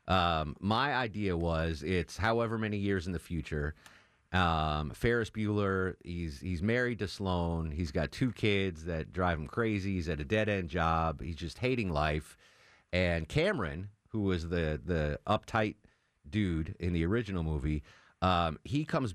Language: English